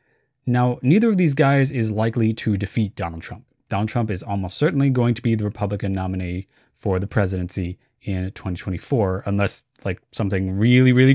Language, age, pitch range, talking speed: English, 30-49, 100-130 Hz, 170 wpm